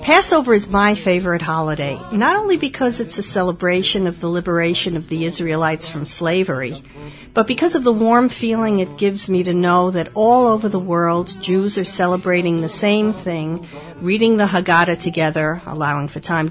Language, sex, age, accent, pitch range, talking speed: Spanish, female, 50-69, American, 170-225 Hz, 175 wpm